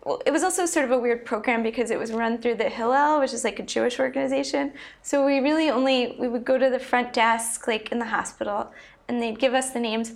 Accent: American